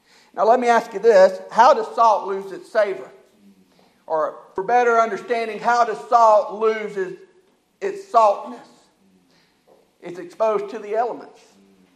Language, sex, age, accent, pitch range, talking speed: English, male, 50-69, American, 205-245 Hz, 135 wpm